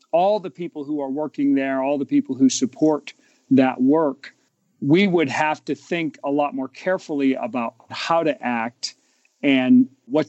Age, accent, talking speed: 40-59, American, 170 wpm